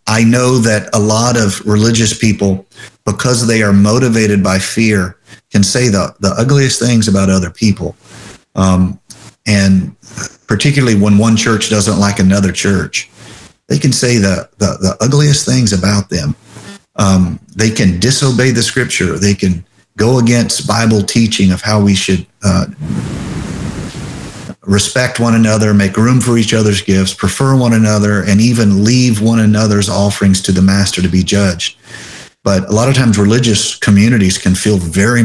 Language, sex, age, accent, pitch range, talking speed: English, male, 40-59, American, 95-115 Hz, 160 wpm